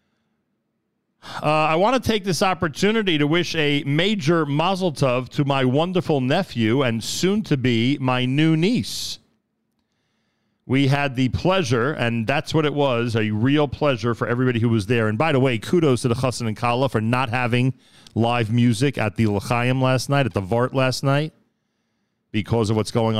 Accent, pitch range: American, 110-145 Hz